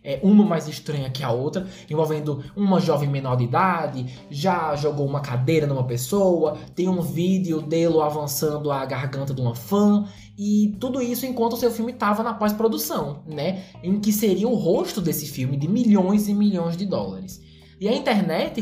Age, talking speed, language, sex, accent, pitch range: 20-39, 180 wpm, Portuguese, male, Brazilian, 150-205 Hz